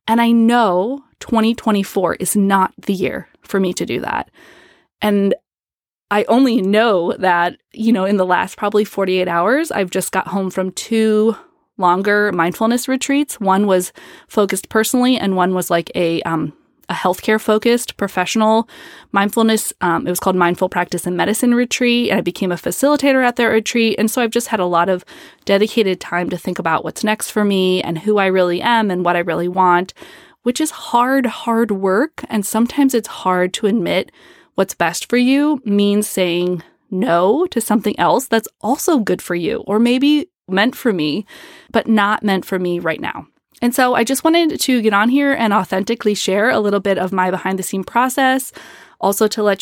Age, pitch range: 20-39, 190-240 Hz